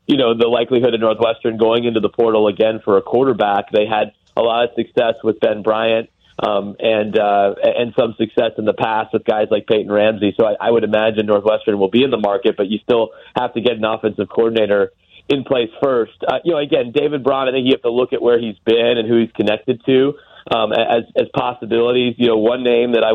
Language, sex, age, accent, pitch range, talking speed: English, male, 40-59, American, 110-125 Hz, 235 wpm